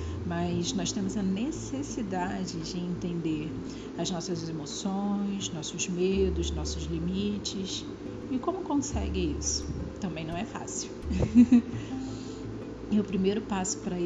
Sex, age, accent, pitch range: female, 40-59, Brazilian, 165-230 Hz